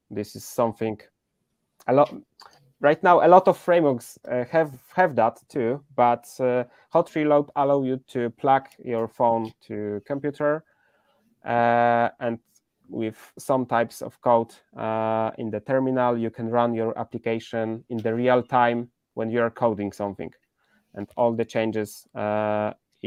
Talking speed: 150 wpm